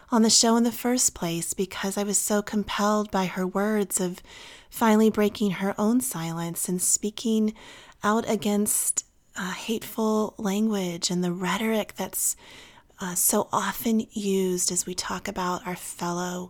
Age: 30-49